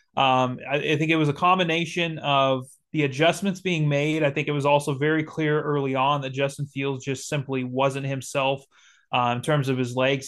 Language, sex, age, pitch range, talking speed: English, male, 30-49, 135-165 Hz, 200 wpm